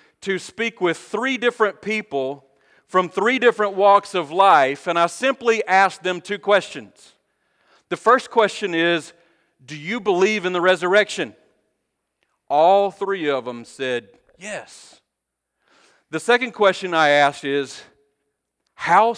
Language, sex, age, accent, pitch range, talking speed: English, male, 40-59, American, 135-200 Hz, 130 wpm